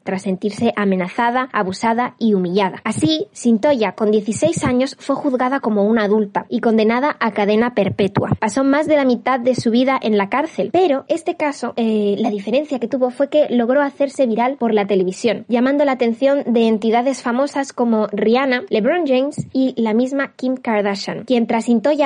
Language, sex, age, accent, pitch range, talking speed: Spanish, female, 20-39, Spanish, 215-265 Hz, 180 wpm